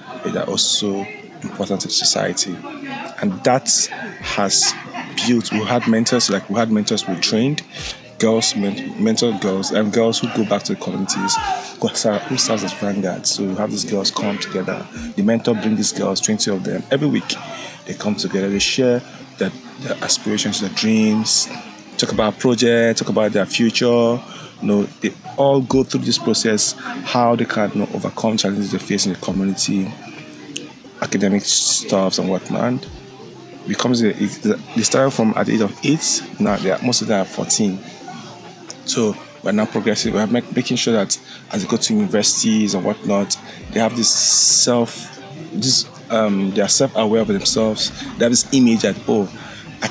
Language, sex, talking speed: English, male, 175 wpm